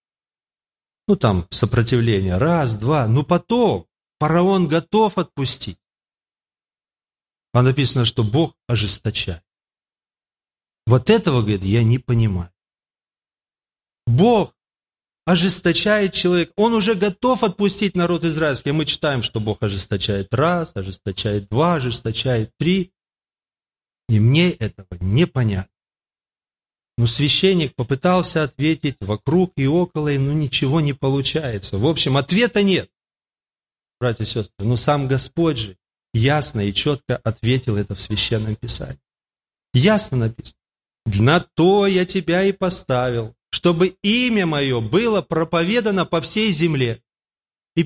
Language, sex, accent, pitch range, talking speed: Russian, male, native, 115-185 Hz, 120 wpm